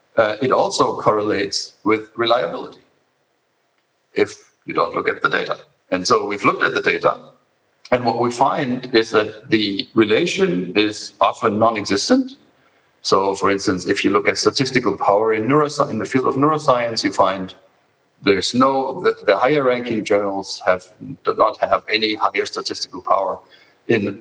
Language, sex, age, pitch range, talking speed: English, male, 50-69, 100-135 Hz, 160 wpm